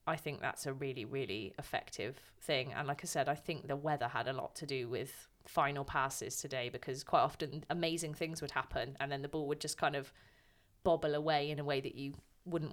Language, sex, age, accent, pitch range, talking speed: English, female, 30-49, British, 140-170 Hz, 225 wpm